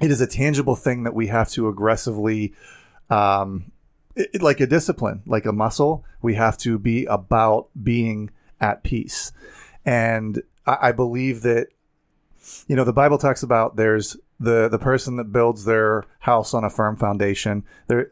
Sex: male